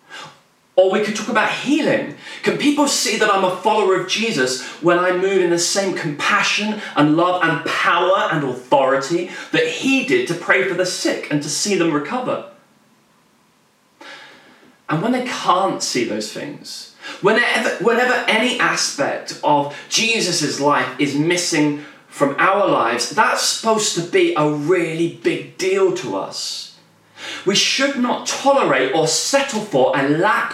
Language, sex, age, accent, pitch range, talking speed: English, male, 20-39, British, 155-250 Hz, 155 wpm